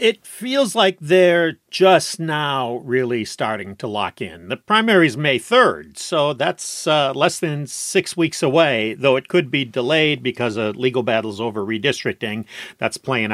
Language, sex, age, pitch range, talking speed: English, male, 50-69, 115-170 Hz, 165 wpm